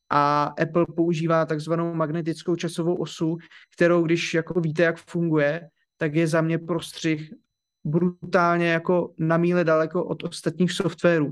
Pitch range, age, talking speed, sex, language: 155-175 Hz, 30-49, 140 wpm, male, Czech